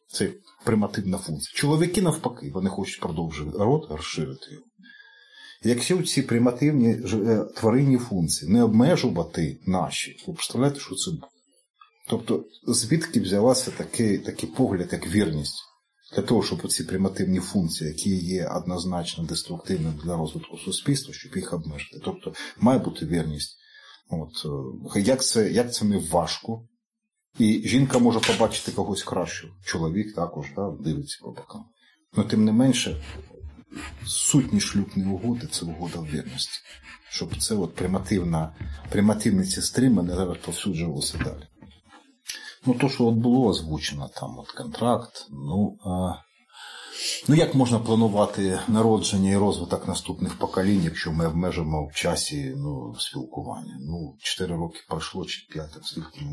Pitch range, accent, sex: 85-125 Hz, native, male